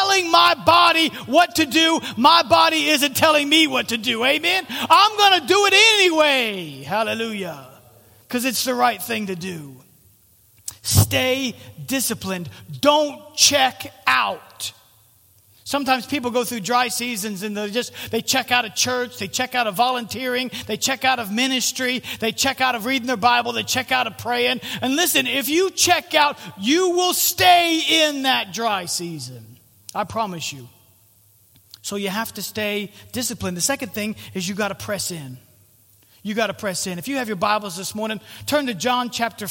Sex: male